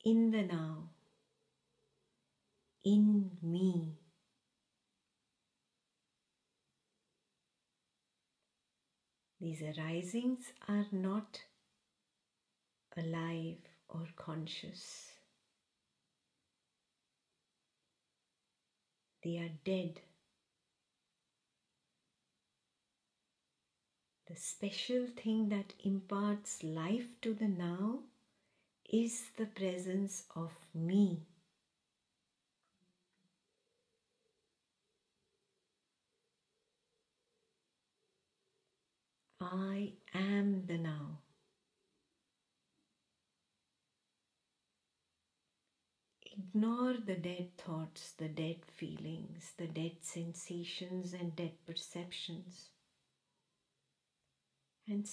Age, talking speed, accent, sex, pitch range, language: 50-69, 50 wpm, Indian, female, 170-210 Hz, English